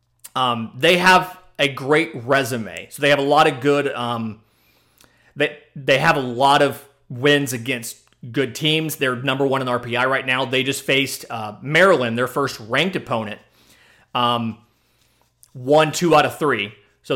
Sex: male